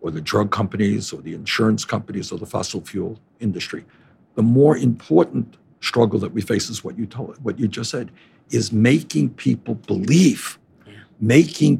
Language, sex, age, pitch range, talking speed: English, male, 60-79, 120-165 Hz, 170 wpm